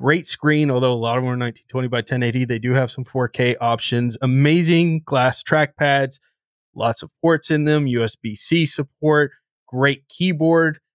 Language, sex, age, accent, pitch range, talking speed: English, male, 20-39, American, 120-140 Hz, 165 wpm